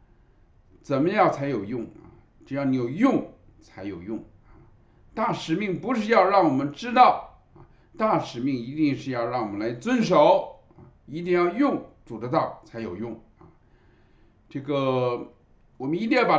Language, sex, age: Chinese, male, 50-69